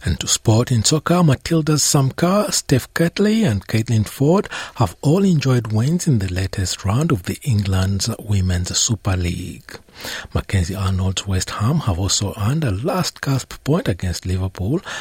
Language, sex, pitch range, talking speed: English, male, 95-140 Hz, 150 wpm